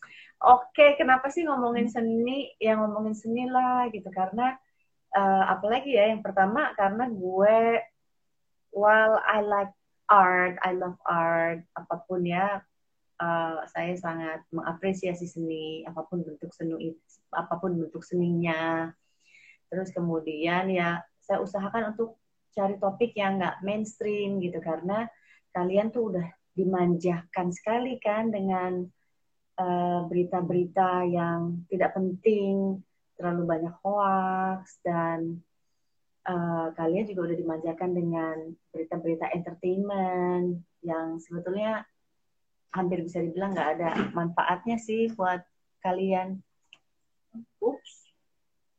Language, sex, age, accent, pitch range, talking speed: English, female, 30-49, Indonesian, 170-210 Hz, 110 wpm